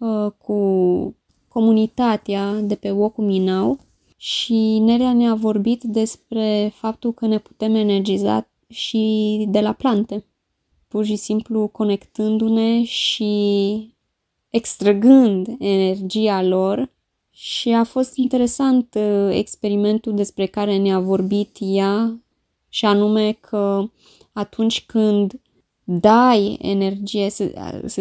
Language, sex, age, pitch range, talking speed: Romanian, female, 20-39, 195-225 Hz, 100 wpm